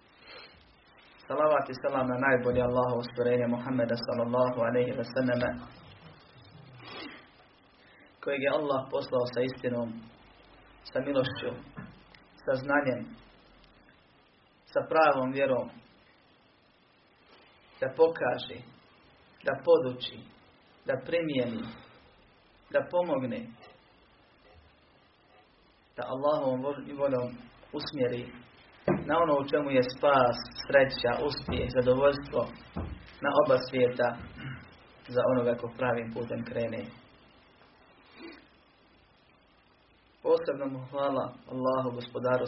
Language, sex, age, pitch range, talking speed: Croatian, male, 40-59, 120-140 Hz, 85 wpm